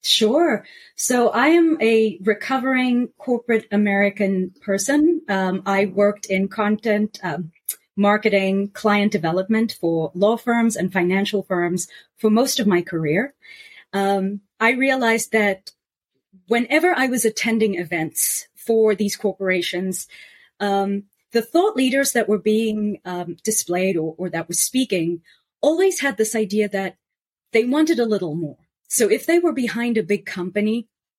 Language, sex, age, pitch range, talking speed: English, female, 30-49, 185-235 Hz, 140 wpm